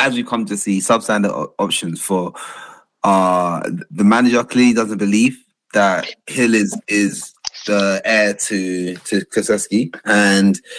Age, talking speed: 30-49, 130 wpm